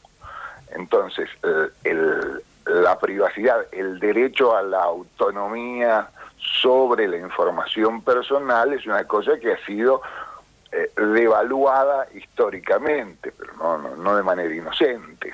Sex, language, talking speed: male, Spanish, 115 wpm